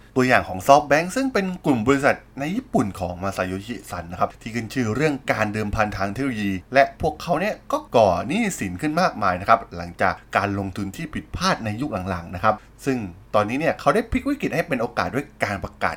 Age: 20-39